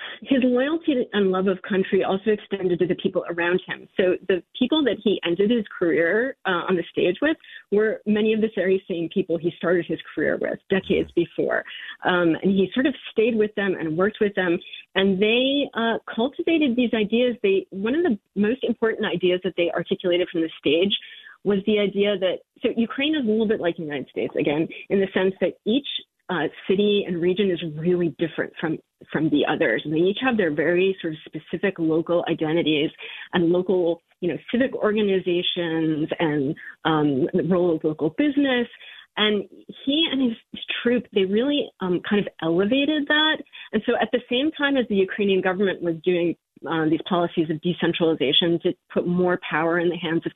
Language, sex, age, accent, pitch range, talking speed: English, female, 40-59, American, 175-230 Hz, 195 wpm